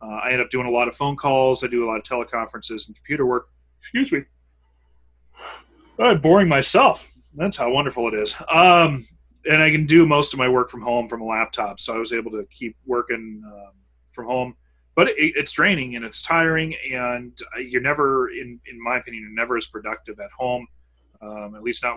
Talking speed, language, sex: 215 wpm, English, male